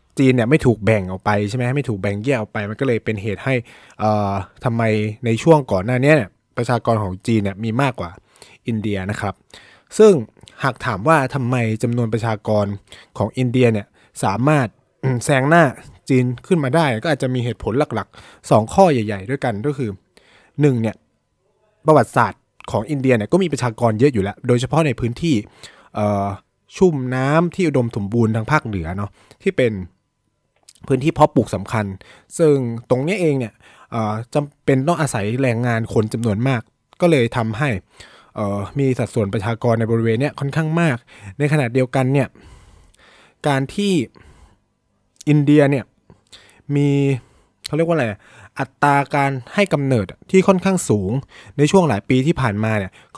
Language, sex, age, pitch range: Thai, male, 20-39, 110-145 Hz